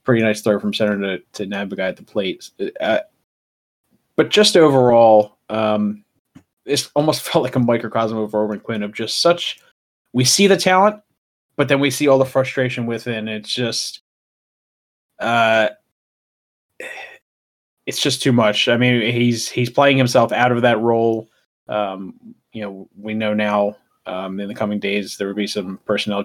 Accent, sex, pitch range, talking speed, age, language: American, male, 105-135 Hz, 170 wpm, 20-39, English